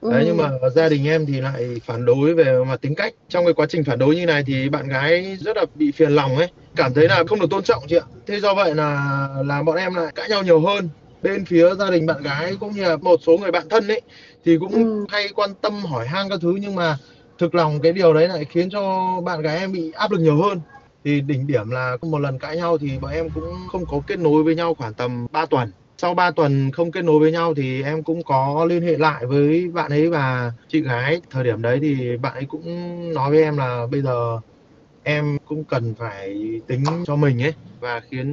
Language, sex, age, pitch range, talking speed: Vietnamese, male, 20-39, 135-170 Hz, 250 wpm